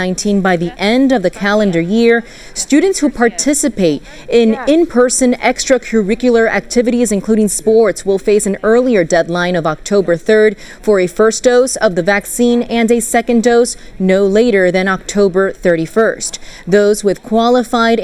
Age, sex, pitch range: 30-49, female, 190-235 Hz